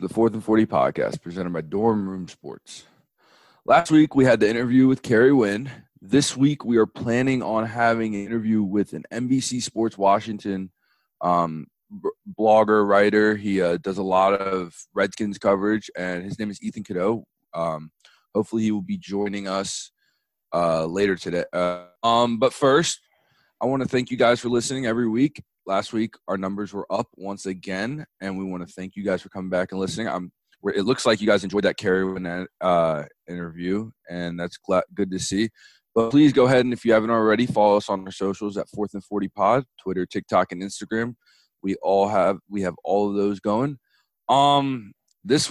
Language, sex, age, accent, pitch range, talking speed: English, male, 20-39, American, 95-115 Hz, 190 wpm